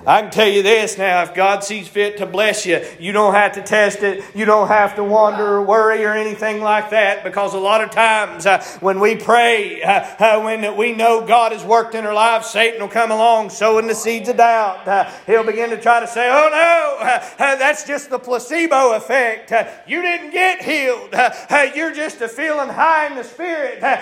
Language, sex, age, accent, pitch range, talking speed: English, male, 40-59, American, 205-275 Hz, 200 wpm